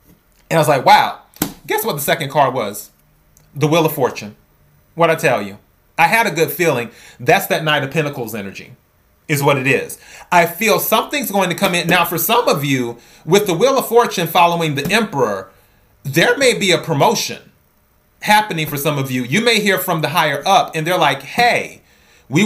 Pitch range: 140-180 Hz